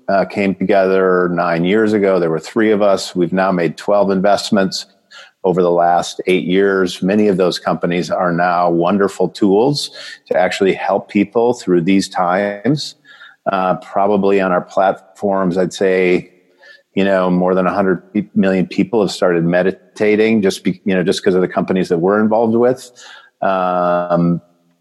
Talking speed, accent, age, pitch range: 165 wpm, American, 50-69, 90-105 Hz